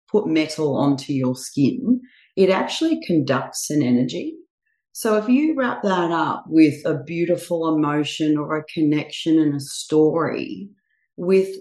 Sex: female